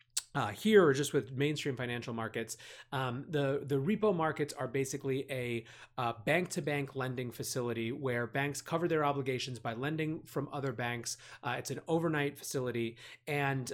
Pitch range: 120-150 Hz